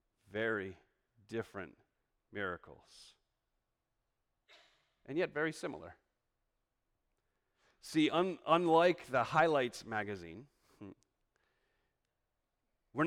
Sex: male